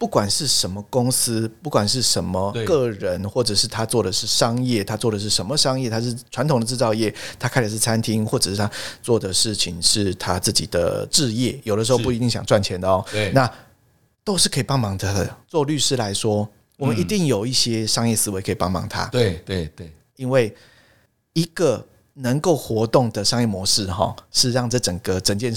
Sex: male